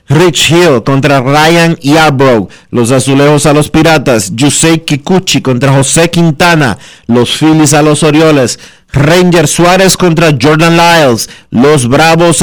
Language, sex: Spanish, male